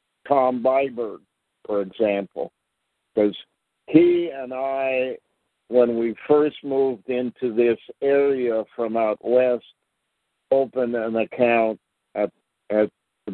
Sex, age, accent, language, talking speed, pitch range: male, 60-79, American, English, 110 wpm, 105-125 Hz